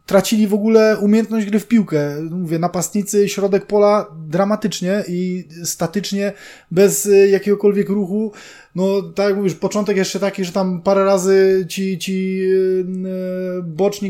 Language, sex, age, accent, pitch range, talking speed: Polish, male, 20-39, native, 175-210 Hz, 130 wpm